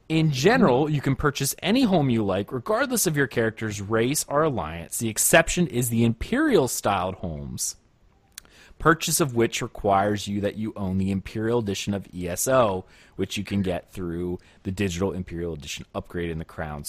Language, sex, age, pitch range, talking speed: English, male, 30-49, 95-125 Hz, 170 wpm